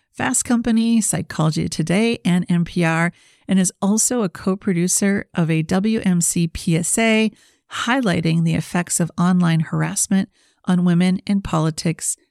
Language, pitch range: English, 165-195 Hz